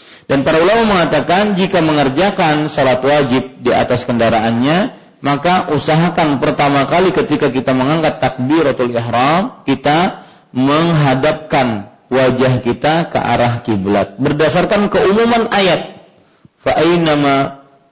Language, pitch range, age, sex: Malay, 115-160 Hz, 40-59, male